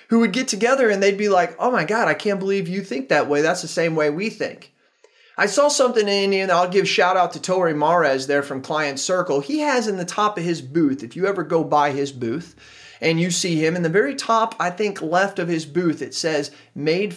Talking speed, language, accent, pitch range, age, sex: 265 wpm, English, American, 160-215 Hz, 30-49, male